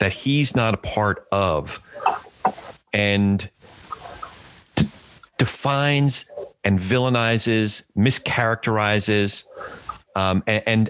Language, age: English, 40-59